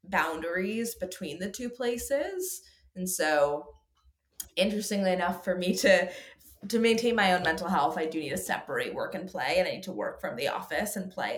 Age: 20-39